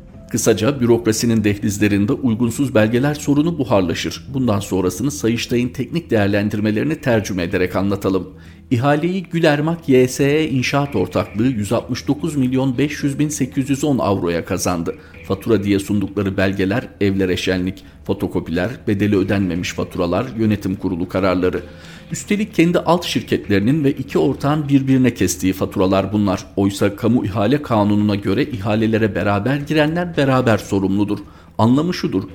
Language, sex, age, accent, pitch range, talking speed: Turkish, male, 50-69, native, 95-130 Hz, 110 wpm